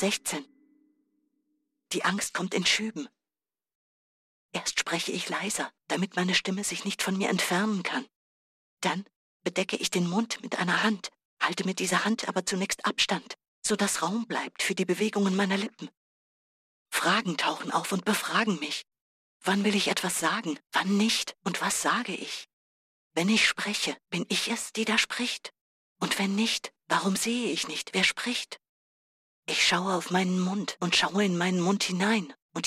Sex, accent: female, German